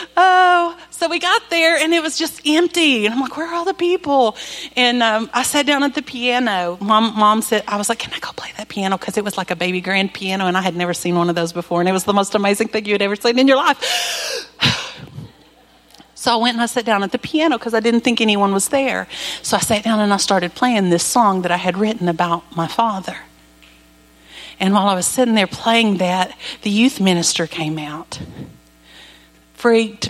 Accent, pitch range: American, 175-240 Hz